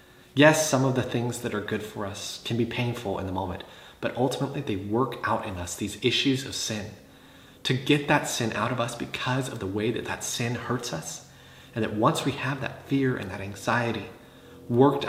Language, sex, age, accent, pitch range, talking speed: English, male, 30-49, American, 100-135 Hz, 215 wpm